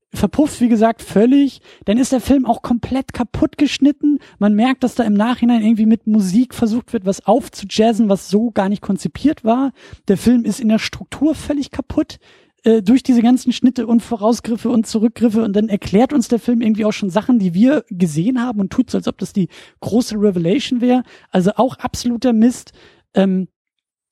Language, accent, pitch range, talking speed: German, German, 210-265 Hz, 195 wpm